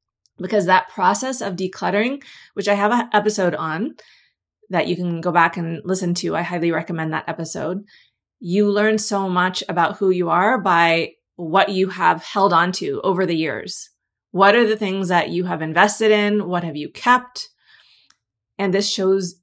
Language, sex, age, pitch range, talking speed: English, female, 30-49, 175-210 Hz, 180 wpm